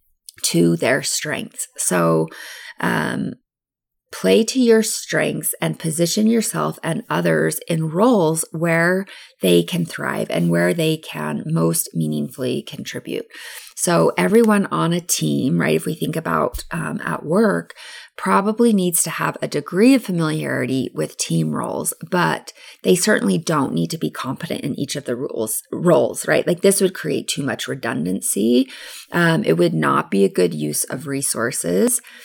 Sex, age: female, 30-49